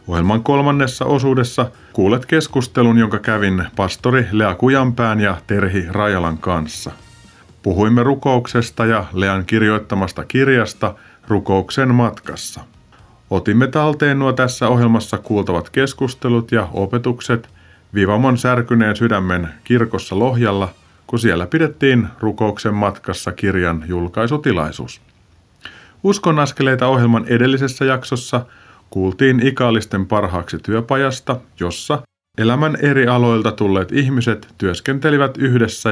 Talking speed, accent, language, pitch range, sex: 100 wpm, native, Finnish, 95-125 Hz, male